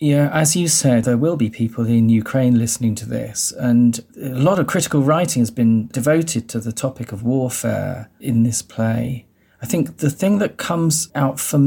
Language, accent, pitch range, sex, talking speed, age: English, British, 115-145 Hz, male, 195 wpm, 40-59